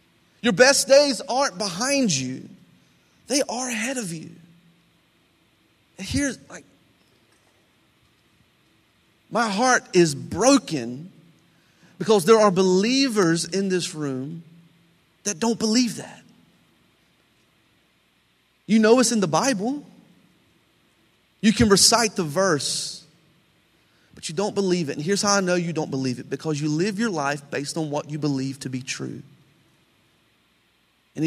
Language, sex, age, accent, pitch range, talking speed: English, male, 30-49, American, 145-195 Hz, 130 wpm